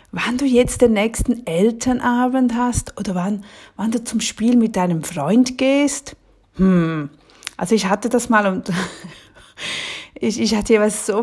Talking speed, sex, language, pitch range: 155 wpm, female, German, 180-235 Hz